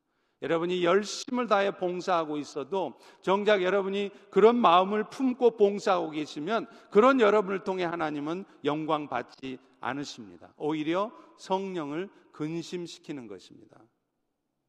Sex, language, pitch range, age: male, Korean, 140-190 Hz, 50-69